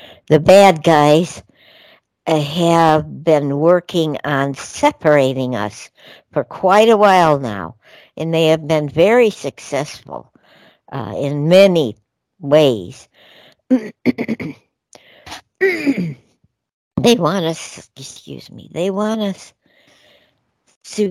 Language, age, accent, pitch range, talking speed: English, 60-79, American, 130-175 Hz, 95 wpm